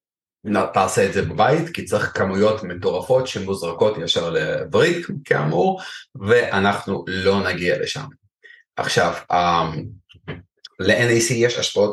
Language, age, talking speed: Hebrew, 30-49, 100 wpm